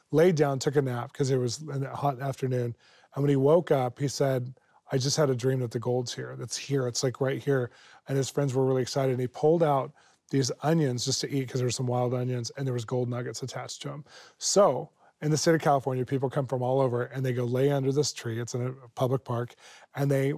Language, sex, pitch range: English, male, 125-140 Hz